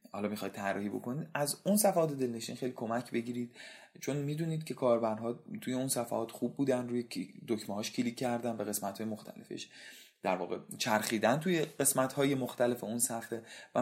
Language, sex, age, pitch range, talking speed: Persian, male, 30-49, 115-135 Hz, 170 wpm